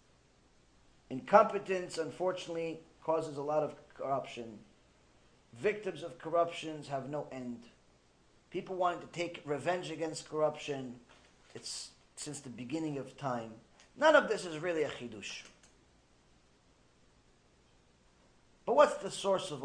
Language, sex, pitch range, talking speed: English, male, 135-220 Hz, 115 wpm